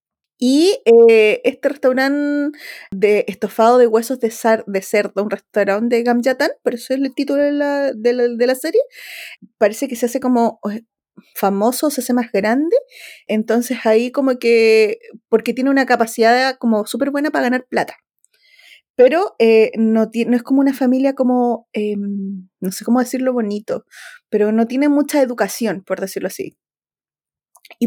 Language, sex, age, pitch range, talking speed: Spanish, female, 20-39, 215-260 Hz, 165 wpm